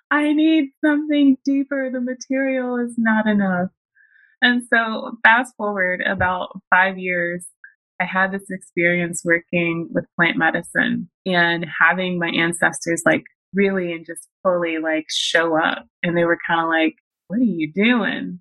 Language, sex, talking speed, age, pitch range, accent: English, female, 150 wpm, 20-39, 170-210 Hz, American